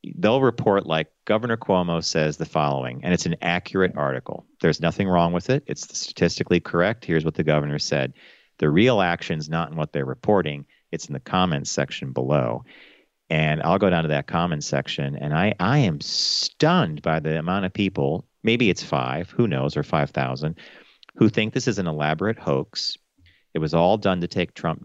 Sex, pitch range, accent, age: male, 80-130 Hz, American, 40-59